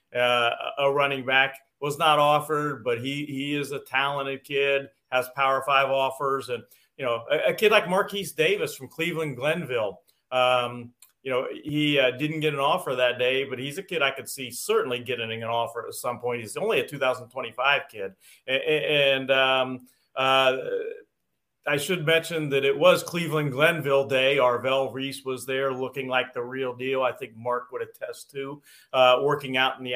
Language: English